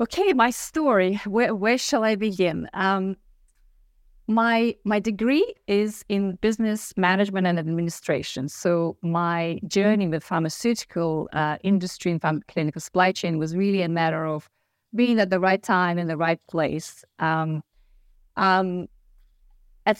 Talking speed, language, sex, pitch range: 140 wpm, English, female, 165-210 Hz